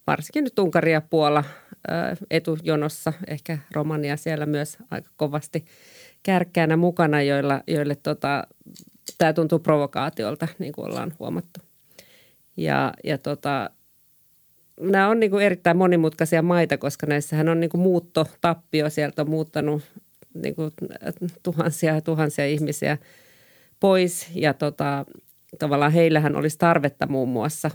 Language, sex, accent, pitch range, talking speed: Finnish, female, native, 145-170 Hz, 115 wpm